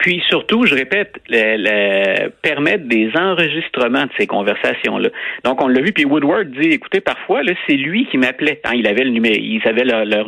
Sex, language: male, French